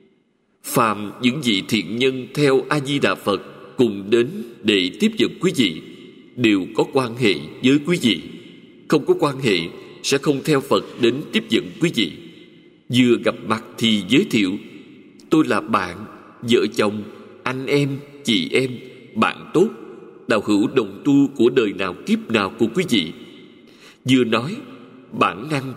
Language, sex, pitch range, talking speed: Vietnamese, male, 115-150 Hz, 165 wpm